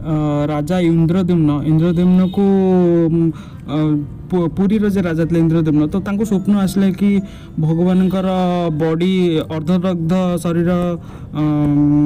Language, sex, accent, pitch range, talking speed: Hindi, male, native, 160-195 Hz, 80 wpm